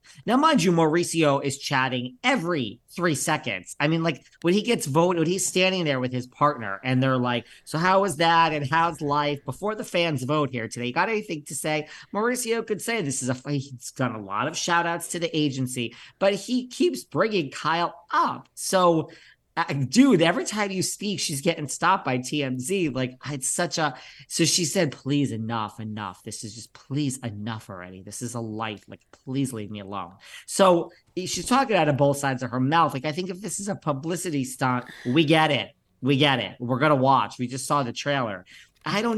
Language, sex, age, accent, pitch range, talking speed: English, male, 40-59, American, 125-175 Hz, 205 wpm